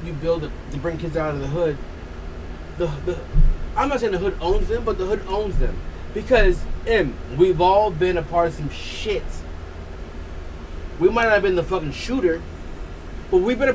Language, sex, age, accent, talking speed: English, male, 20-39, American, 200 wpm